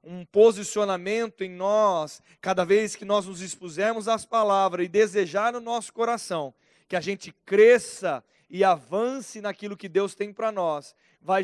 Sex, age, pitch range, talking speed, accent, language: male, 20-39, 180-220 Hz, 155 wpm, Brazilian, Portuguese